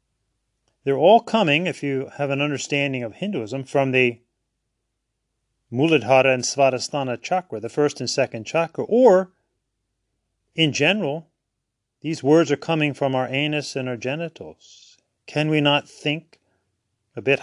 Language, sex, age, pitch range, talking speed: English, male, 30-49, 125-165 Hz, 140 wpm